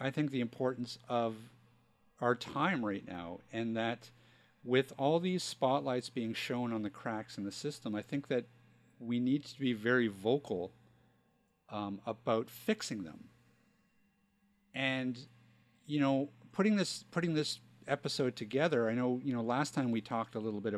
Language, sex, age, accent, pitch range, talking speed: English, male, 50-69, American, 110-145 Hz, 160 wpm